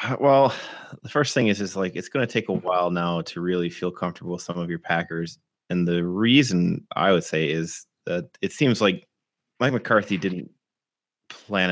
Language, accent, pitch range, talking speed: English, American, 90-105 Hz, 195 wpm